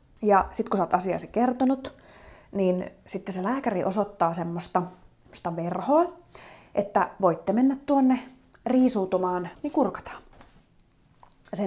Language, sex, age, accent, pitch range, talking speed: Finnish, female, 30-49, native, 185-260 Hz, 120 wpm